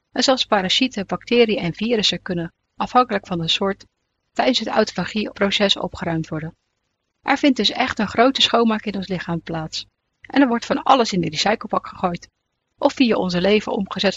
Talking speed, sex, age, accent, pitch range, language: 175 wpm, female, 30-49, Dutch, 180-230 Hz, Dutch